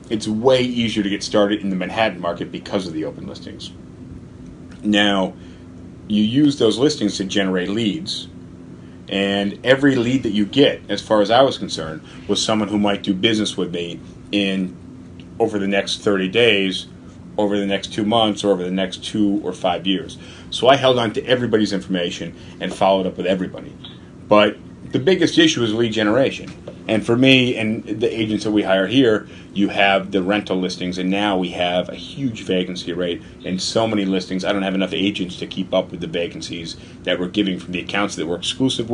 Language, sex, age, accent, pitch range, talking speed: English, male, 30-49, American, 90-110 Hz, 195 wpm